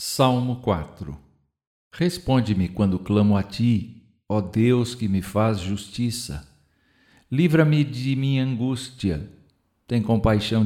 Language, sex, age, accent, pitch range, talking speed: Portuguese, male, 60-79, Brazilian, 95-120 Hz, 105 wpm